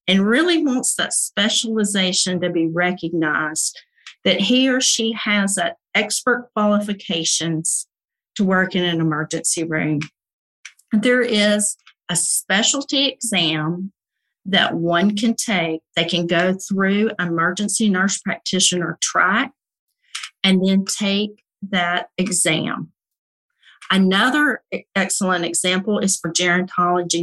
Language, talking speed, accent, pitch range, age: English, 110 wpm, American, 170-205 Hz, 50-69